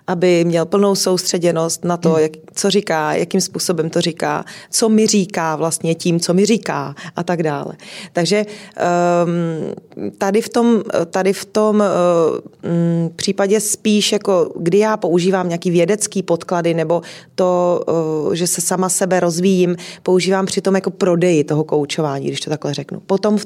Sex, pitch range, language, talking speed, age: female, 170-195 Hz, Czech, 150 wpm, 30-49